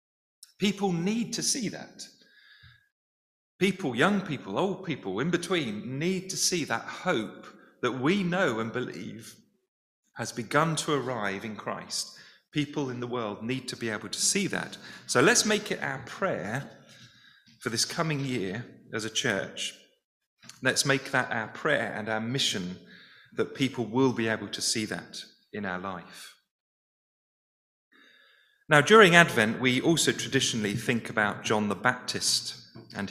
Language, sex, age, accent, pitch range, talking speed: English, male, 40-59, British, 110-170 Hz, 150 wpm